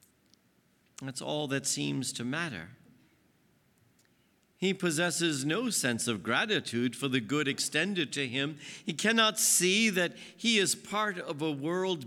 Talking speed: 140 wpm